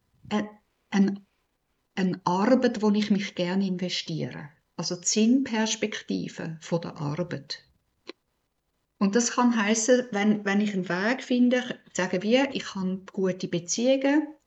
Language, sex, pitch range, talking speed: German, female, 175-225 Hz, 120 wpm